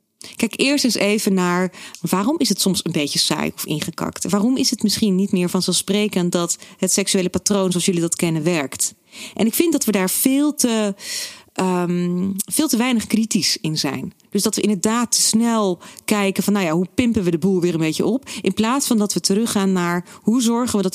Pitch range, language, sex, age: 180-230 Hz, Dutch, female, 40-59